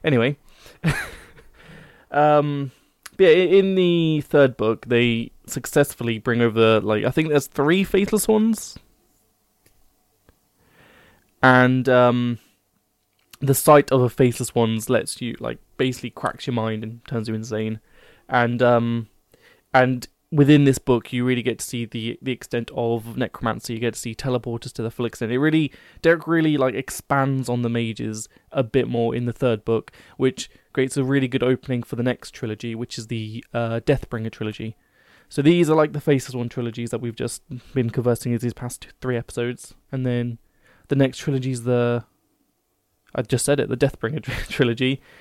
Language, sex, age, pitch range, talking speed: English, male, 20-39, 115-135 Hz, 170 wpm